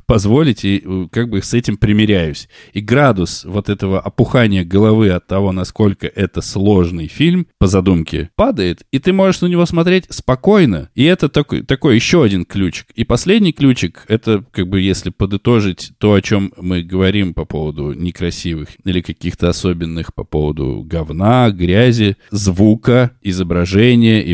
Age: 20-39